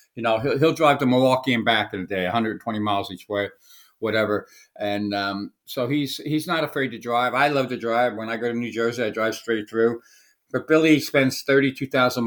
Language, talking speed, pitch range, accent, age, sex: English, 215 wpm, 115-140 Hz, American, 60-79, male